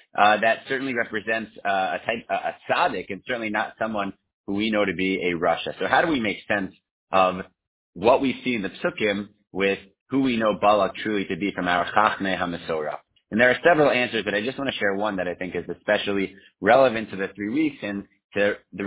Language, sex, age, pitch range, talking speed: English, male, 30-49, 95-120 Hz, 225 wpm